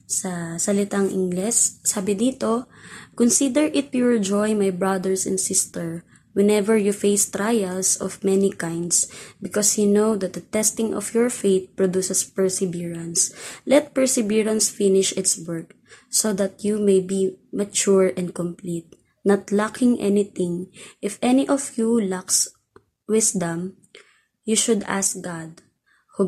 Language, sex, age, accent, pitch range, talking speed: Filipino, female, 20-39, native, 185-215 Hz, 130 wpm